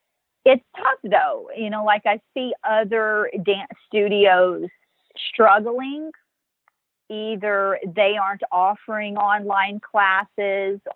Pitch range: 180-220 Hz